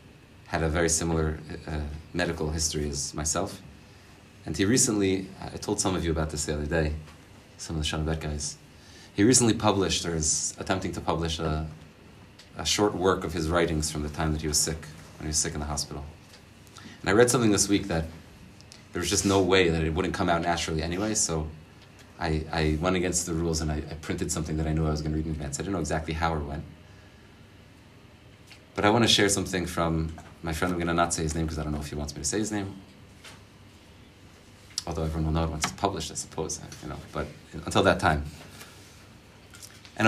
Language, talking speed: English, 225 wpm